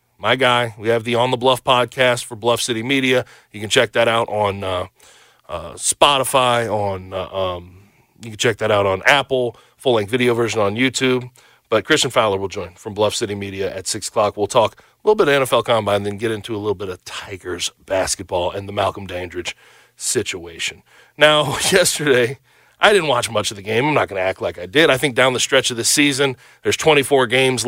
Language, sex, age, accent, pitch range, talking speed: English, male, 30-49, American, 120-175 Hz, 215 wpm